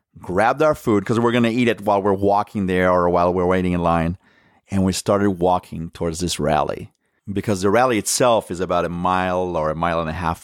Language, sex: English, male